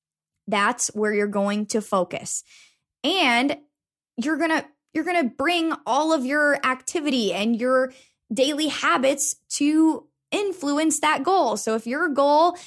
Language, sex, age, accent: English, female, 20-39, American